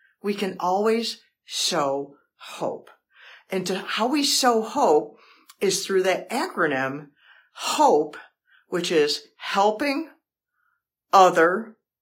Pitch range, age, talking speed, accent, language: 180-240 Hz, 50-69, 95 wpm, American, English